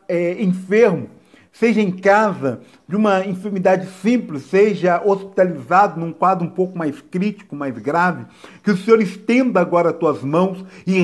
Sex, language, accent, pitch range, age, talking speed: male, Portuguese, Brazilian, 170-205 Hz, 50-69, 150 wpm